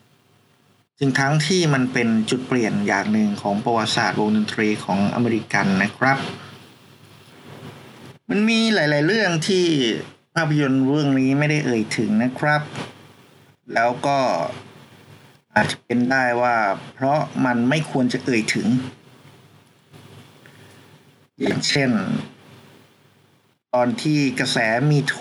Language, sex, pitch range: Thai, male, 120-140 Hz